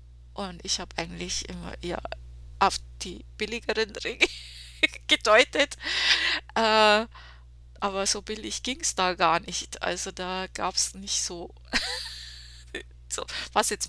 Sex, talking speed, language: female, 125 wpm, German